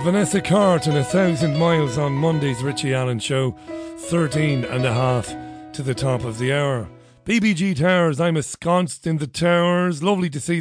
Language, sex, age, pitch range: English, male, 40-59, 115-150 Hz